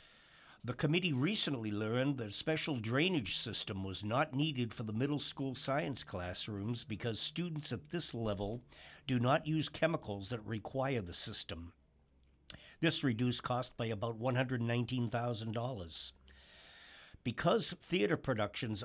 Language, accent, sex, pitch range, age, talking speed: English, American, male, 110-140 Hz, 60-79, 125 wpm